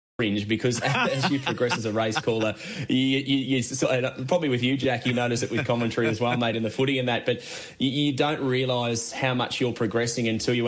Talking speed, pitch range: 230 wpm, 115-130 Hz